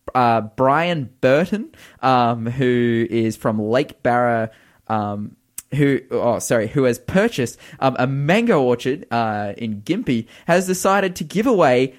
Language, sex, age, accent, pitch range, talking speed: English, male, 10-29, Australian, 120-160 Hz, 140 wpm